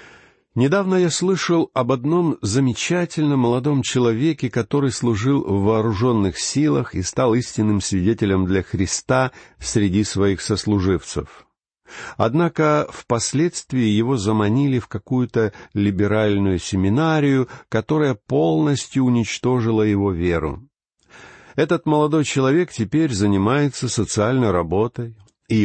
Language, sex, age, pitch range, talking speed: Russian, male, 50-69, 100-140 Hz, 100 wpm